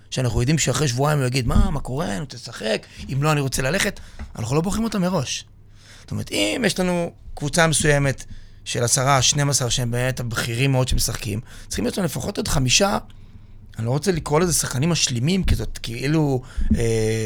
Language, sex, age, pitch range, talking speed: Hebrew, male, 30-49, 115-155 Hz, 190 wpm